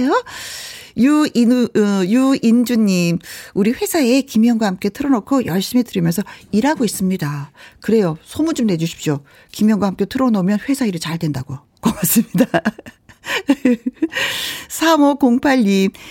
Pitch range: 180-270 Hz